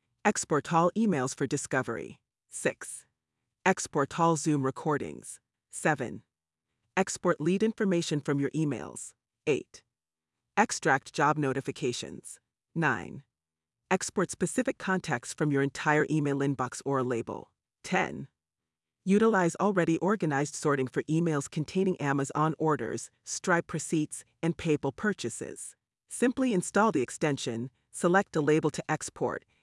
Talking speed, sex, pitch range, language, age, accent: 115 wpm, female, 140-180 Hz, English, 40-59, American